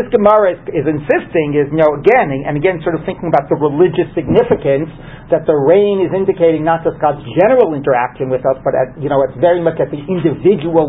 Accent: American